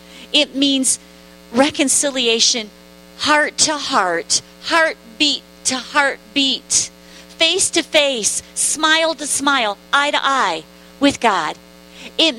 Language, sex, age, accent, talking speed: English, female, 40-59, American, 100 wpm